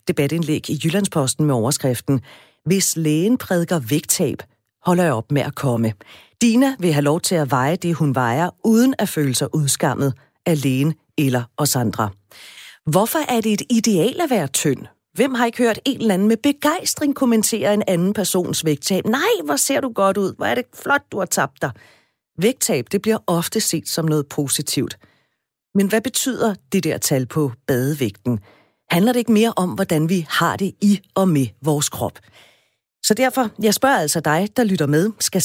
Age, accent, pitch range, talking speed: 40-59, native, 140-200 Hz, 185 wpm